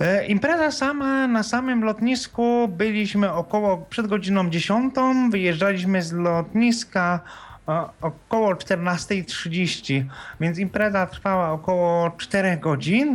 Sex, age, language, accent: male, 30-49, Polish, native